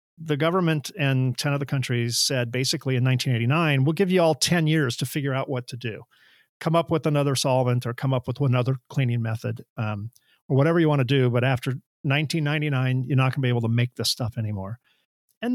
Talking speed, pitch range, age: 215 wpm, 120-150 Hz, 50-69